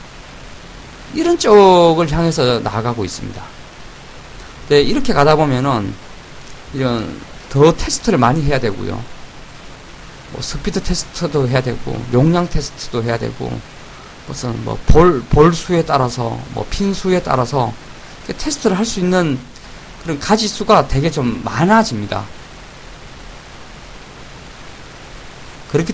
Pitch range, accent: 125-190 Hz, native